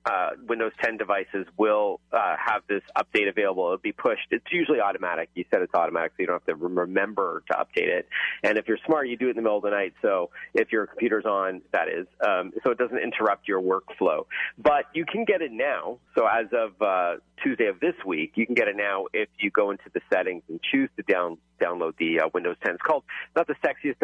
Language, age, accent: English, 40-59, American